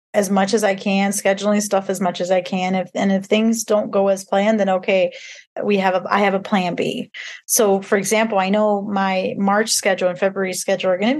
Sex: female